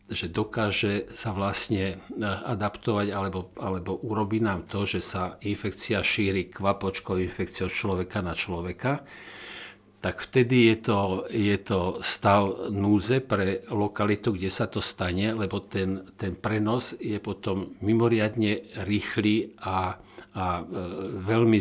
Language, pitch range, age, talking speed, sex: Slovak, 95-110 Hz, 60-79, 125 wpm, male